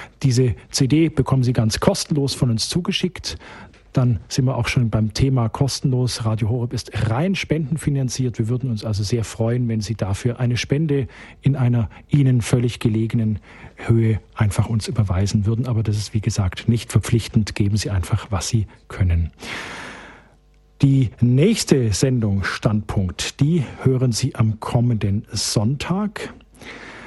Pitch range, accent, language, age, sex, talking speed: 110-135 Hz, German, German, 50-69, male, 145 wpm